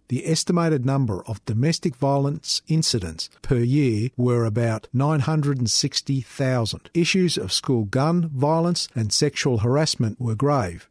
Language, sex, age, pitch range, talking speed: English, male, 50-69, 115-150 Hz, 120 wpm